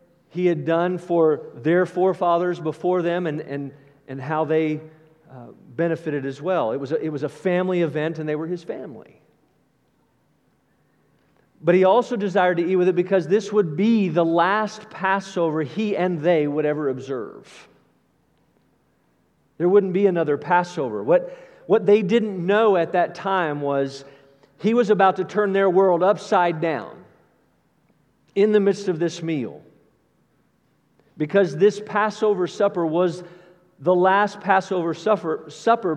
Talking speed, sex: 145 wpm, male